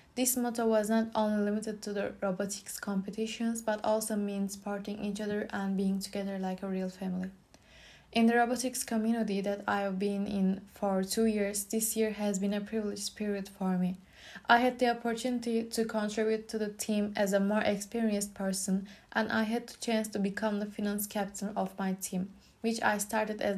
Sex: female